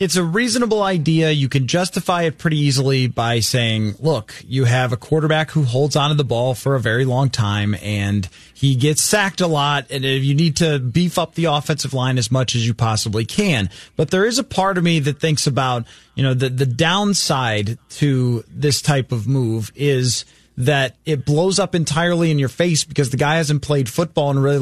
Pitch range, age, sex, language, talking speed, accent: 135-170 Hz, 30-49, male, English, 210 wpm, American